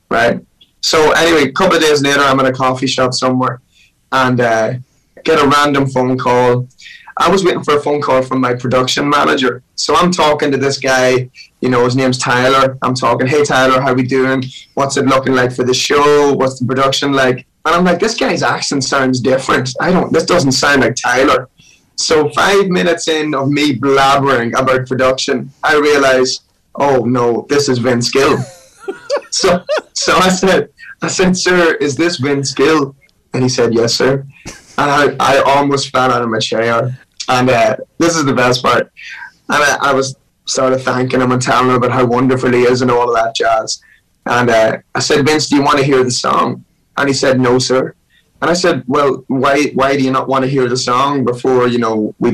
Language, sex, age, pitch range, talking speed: English, male, 20-39, 125-140 Hz, 210 wpm